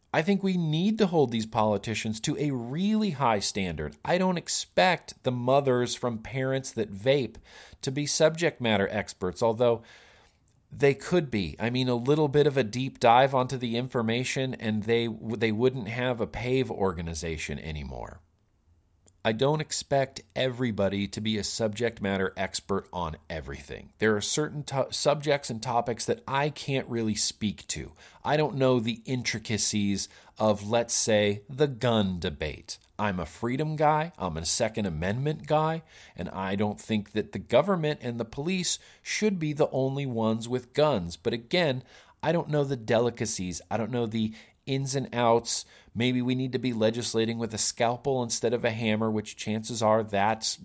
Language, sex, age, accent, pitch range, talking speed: English, male, 40-59, American, 100-135 Hz, 170 wpm